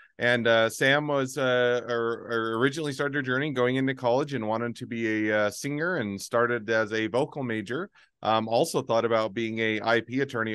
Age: 30-49